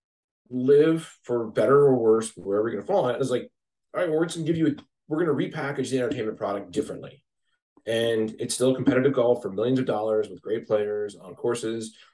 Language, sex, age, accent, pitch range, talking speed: English, male, 30-49, American, 110-140 Hz, 215 wpm